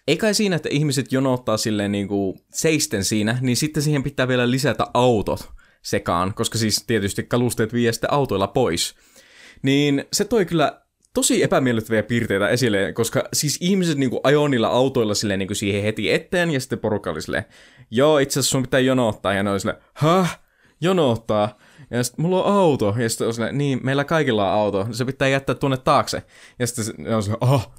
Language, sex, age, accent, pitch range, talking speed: Finnish, male, 20-39, native, 110-140 Hz, 175 wpm